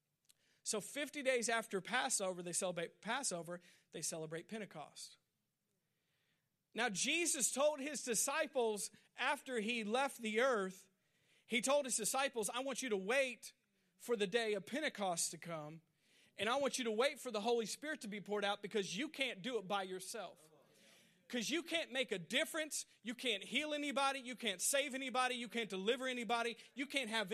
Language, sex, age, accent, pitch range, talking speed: English, male, 40-59, American, 195-260 Hz, 175 wpm